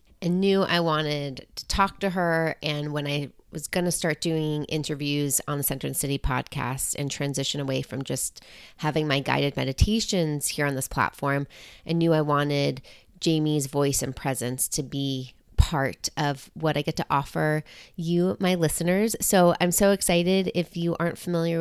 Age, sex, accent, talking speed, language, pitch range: 30-49, female, American, 180 wpm, English, 145-175 Hz